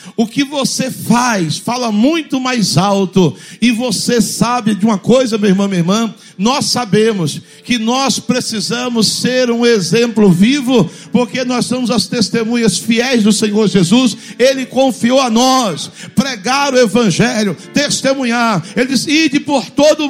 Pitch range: 195-245 Hz